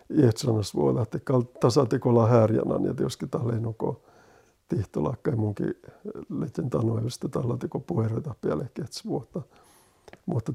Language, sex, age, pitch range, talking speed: Finnish, male, 50-69, 115-130 Hz, 110 wpm